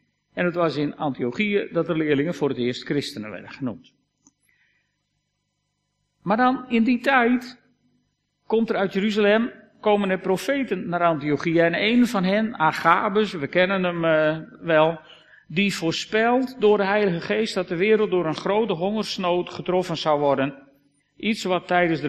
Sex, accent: male, Dutch